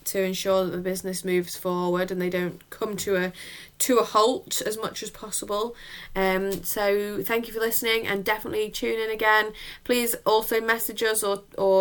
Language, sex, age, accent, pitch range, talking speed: English, female, 10-29, British, 180-205 Hz, 195 wpm